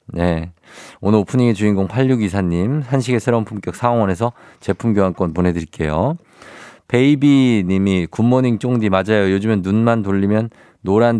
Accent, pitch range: native, 95-125 Hz